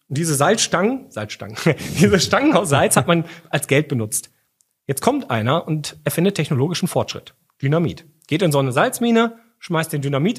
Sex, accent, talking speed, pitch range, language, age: male, German, 175 wpm, 130-170 Hz, German, 40-59